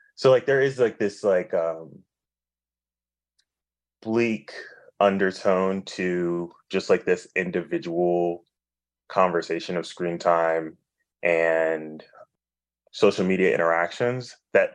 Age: 20-39